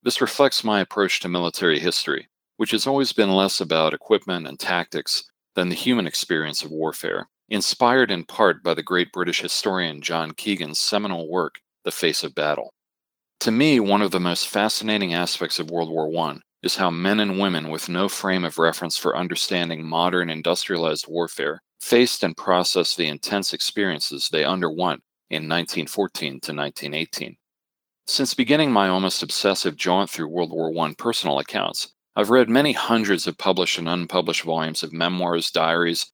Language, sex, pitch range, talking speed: English, male, 80-100 Hz, 170 wpm